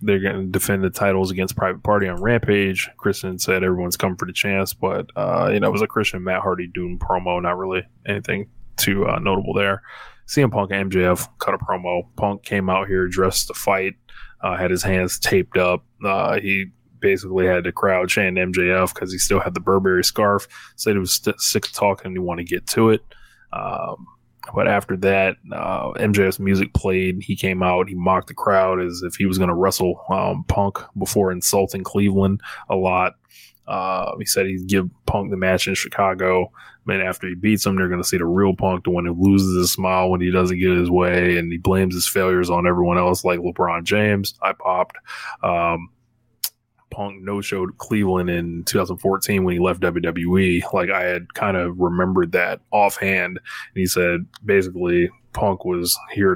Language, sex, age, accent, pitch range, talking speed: English, male, 20-39, American, 90-100 Hz, 200 wpm